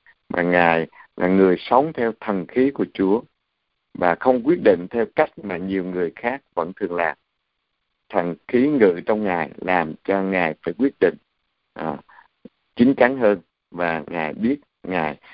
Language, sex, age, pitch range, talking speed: Vietnamese, male, 50-69, 90-130 Hz, 165 wpm